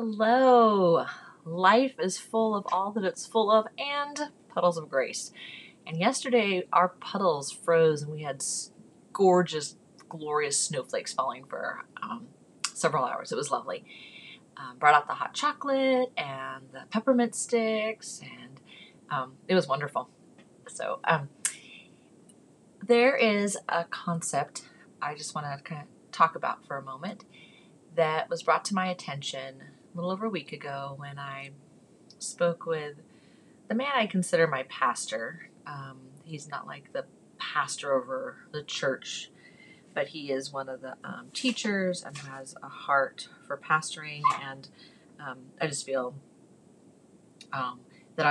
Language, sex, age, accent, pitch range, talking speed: English, female, 30-49, American, 140-195 Hz, 145 wpm